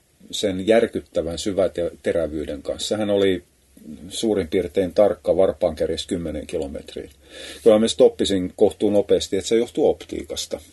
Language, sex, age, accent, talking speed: Finnish, male, 30-49, native, 115 wpm